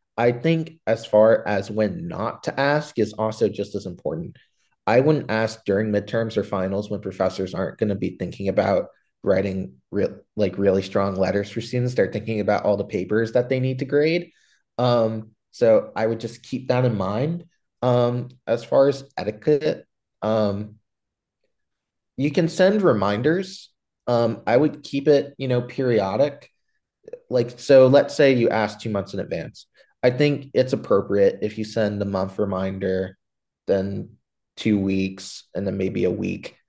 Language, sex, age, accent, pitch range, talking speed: English, male, 20-39, American, 105-135 Hz, 165 wpm